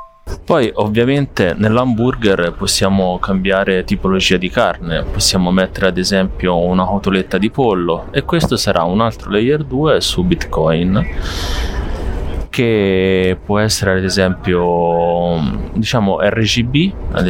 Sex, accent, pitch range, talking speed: male, native, 85-110 Hz, 115 wpm